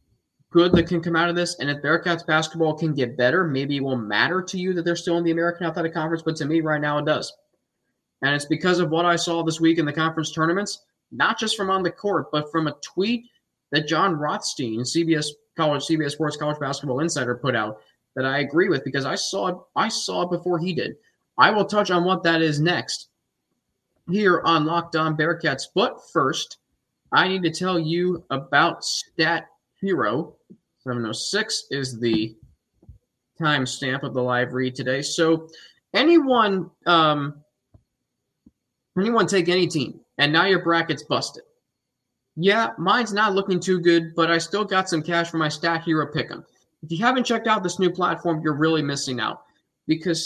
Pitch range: 145-180 Hz